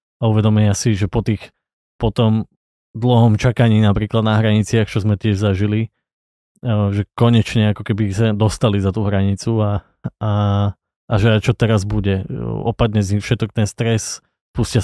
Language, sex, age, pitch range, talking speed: Slovak, male, 20-39, 105-115 Hz, 160 wpm